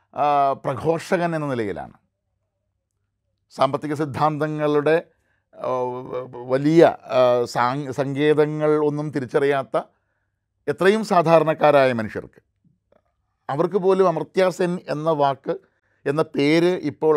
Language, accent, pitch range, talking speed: Malayalam, native, 135-165 Hz, 75 wpm